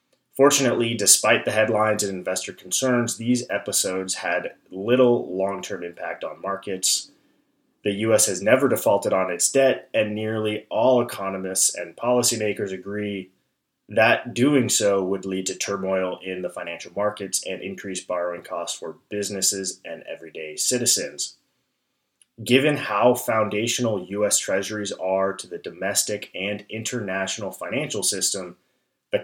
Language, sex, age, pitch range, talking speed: English, male, 20-39, 95-120 Hz, 130 wpm